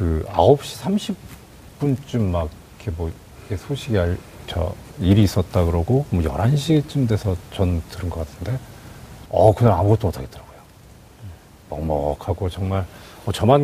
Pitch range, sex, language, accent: 95-120 Hz, male, Korean, native